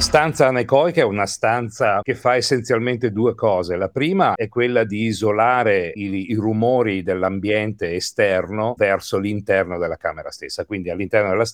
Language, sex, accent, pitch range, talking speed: Italian, male, native, 105-130 Hz, 150 wpm